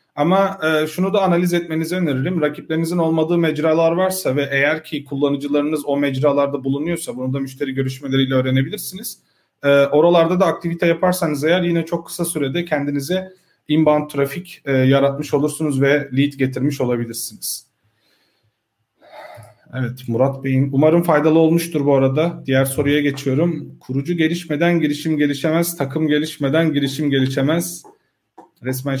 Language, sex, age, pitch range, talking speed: Turkish, male, 40-59, 140-170 Hz, 125 wpm